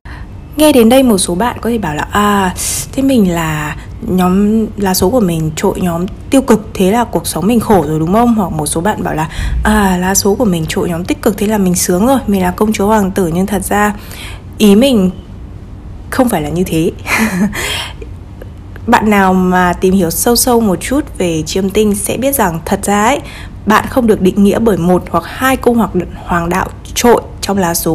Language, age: Vietnamese, 20-39